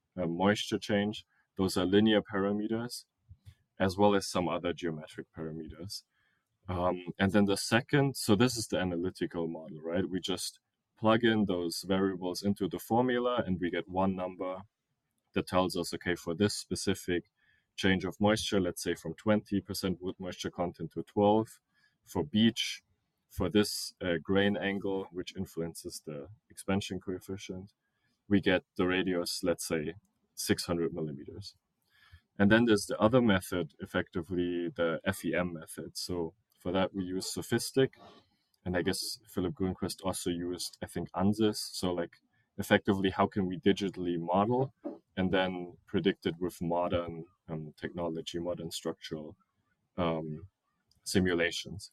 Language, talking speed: English, 145 wpm